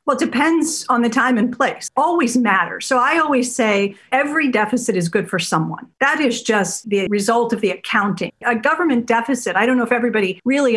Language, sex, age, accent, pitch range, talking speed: English, female, 50-69, American, 200-255 Hz, 205 wpm